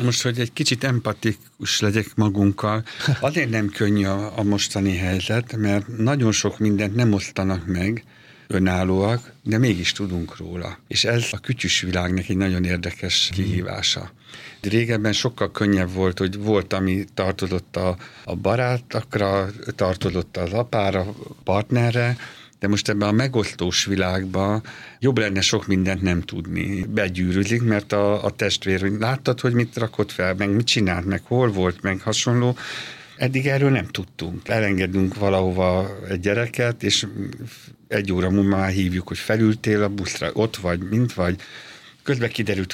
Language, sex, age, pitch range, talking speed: Hungarian, male, 60-79, 95-120 Hz, 145 wpm